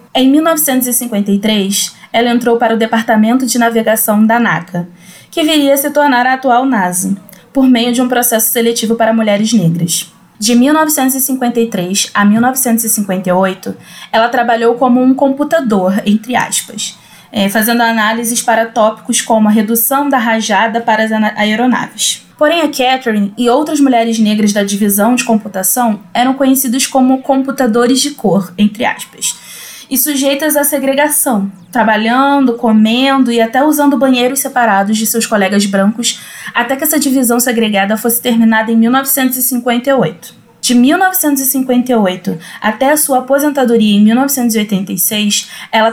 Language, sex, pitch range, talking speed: Portuguese, female, 215-260 Hz, 135 wpm